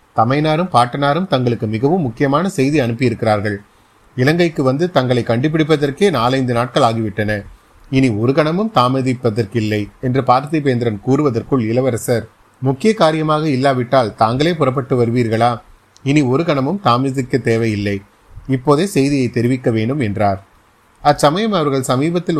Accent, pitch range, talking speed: native, 110-140 Hz, 105 wpm